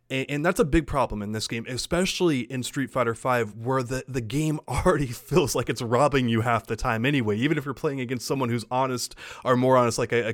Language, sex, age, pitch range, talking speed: English, male, 30-49, 110-140 Hz, 245 wpm